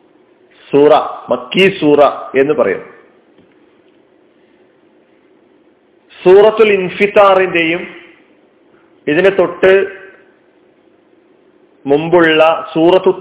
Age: 40-59